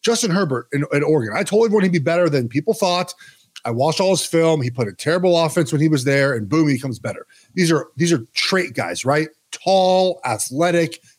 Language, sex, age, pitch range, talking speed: English, male, 30-49, 145-215 Hz, 225 wpm